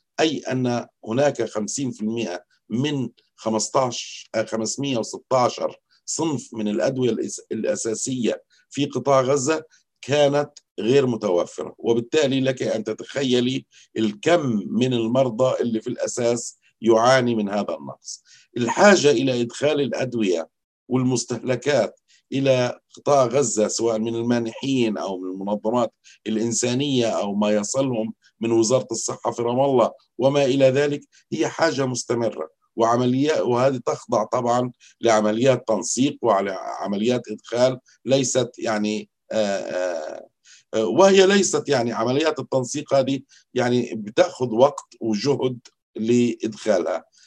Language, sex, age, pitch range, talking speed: Arabic, male, 50-69, 110-135 Hz, 105 wpm